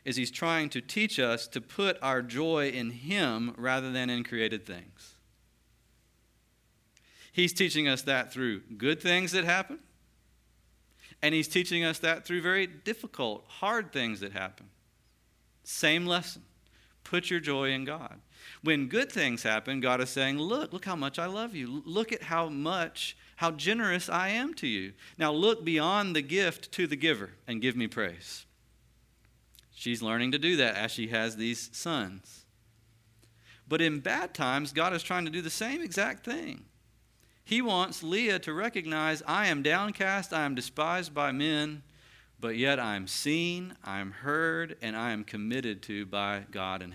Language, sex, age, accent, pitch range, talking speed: English, male, 40-59, American, 110-165 Hz, 170 wpm